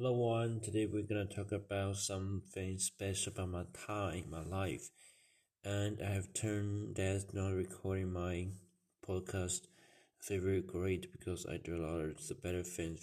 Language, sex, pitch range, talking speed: English, male, 90-95 Hz, 165 wpm